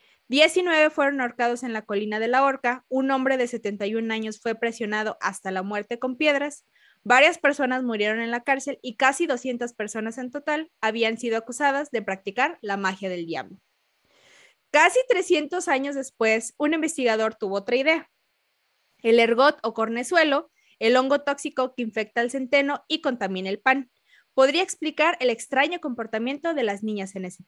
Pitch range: 220-285 Hz